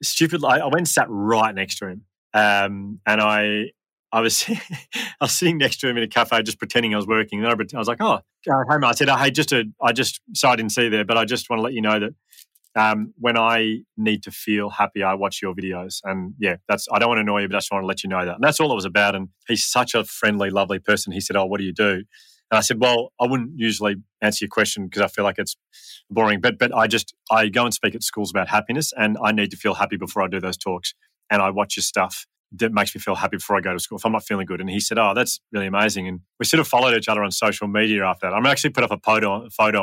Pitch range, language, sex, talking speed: 100-120 Hz, English, male, 290 wpm